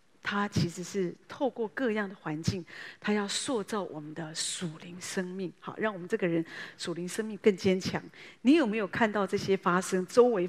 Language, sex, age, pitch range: Chinese, female, 40-59, 175-230 Hz